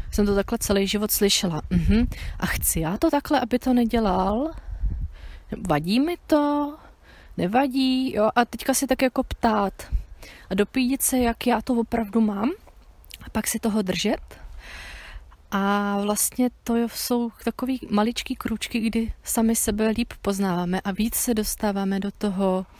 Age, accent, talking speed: 30-49, native, 150 wpm